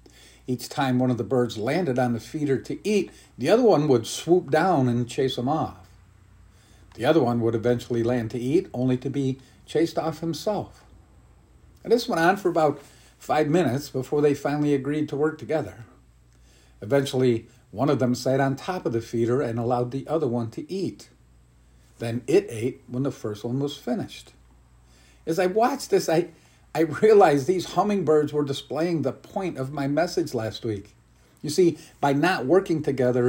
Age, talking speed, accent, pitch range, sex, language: 50-69, 180 wpm, American, 115-160 Hz, male, English